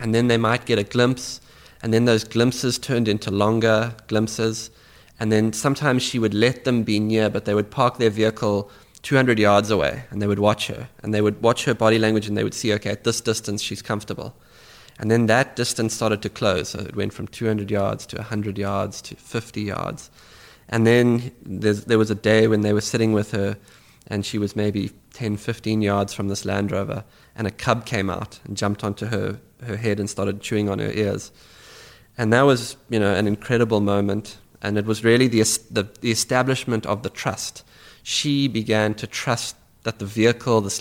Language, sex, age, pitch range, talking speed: English, male, 20-39, 105-115 Hz, 205 wpm